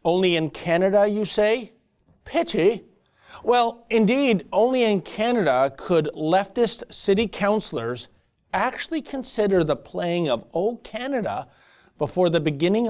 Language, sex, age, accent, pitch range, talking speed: English, male, 40-59, American, 155-210 Hz, 115 wpm